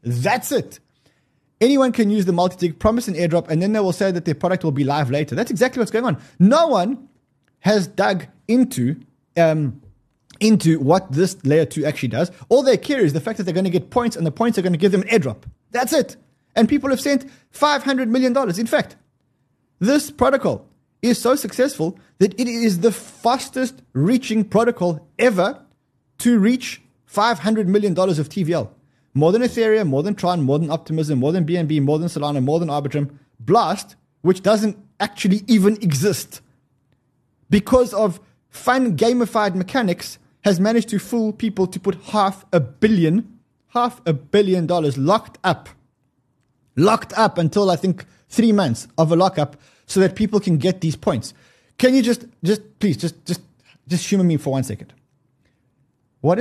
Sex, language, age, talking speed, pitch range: male, English, 20-39, 175 wpm, 145-225 Hz